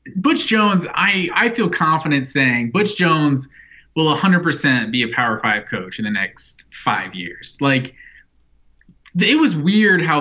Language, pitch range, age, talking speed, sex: English, 125-155 Hz, 20-39, 155 wpm, male